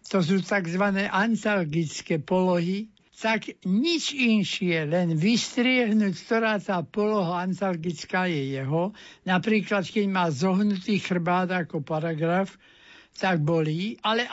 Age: 60-79